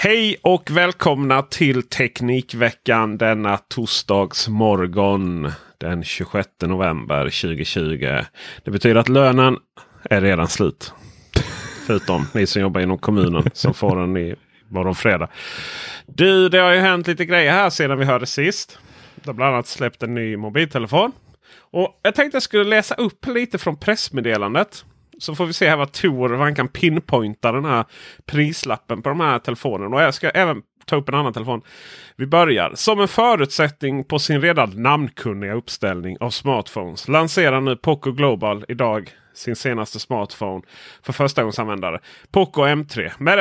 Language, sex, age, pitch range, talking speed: Swedish, male, 30-49, 110-165 Hz, 155 wpm